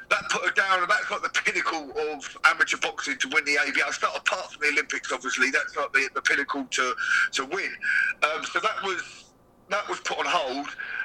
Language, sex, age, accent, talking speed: English, male, 40-59, British, 215 wpm